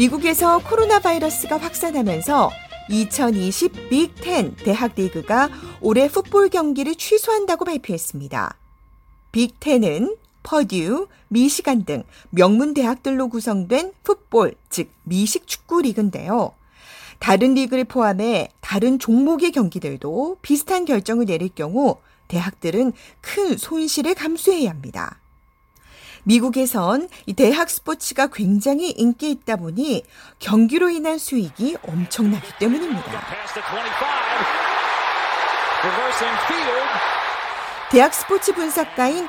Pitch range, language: 215-320 Hz, Korean